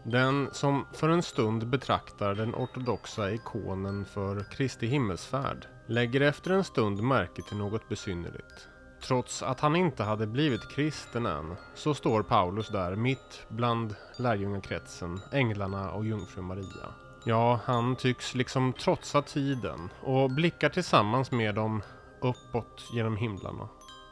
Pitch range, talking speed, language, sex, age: 100-130 Hz, 130 wpm, Swedish, male, 30-49